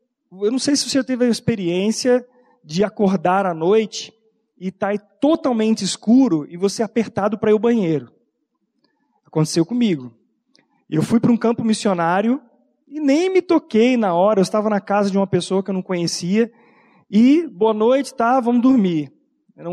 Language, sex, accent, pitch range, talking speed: Portuguese, male, Brazilian, 175-230 Hz, 165 wpm